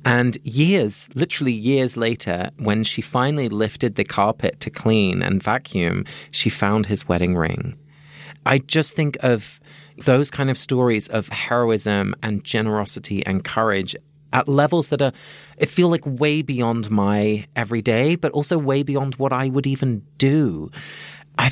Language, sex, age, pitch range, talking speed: English, male, 30-49, 105-145 Hz, 150 wpm